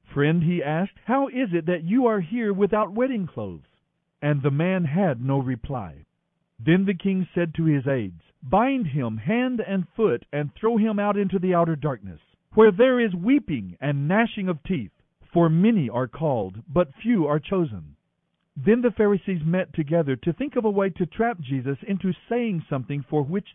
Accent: American